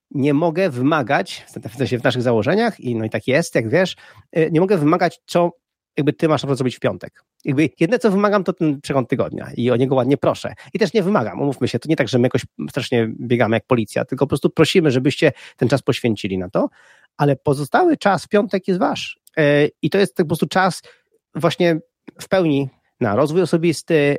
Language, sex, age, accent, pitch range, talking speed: Polish, male, 30-49, native, 125-170 Hz, 215 wpm